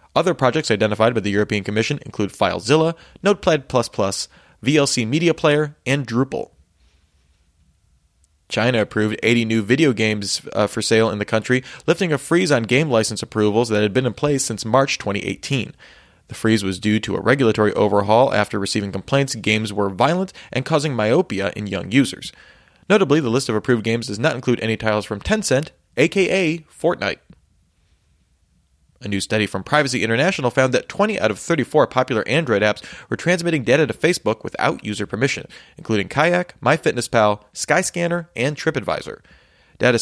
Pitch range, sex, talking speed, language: 105-145 Hz, male, 160 wpm, English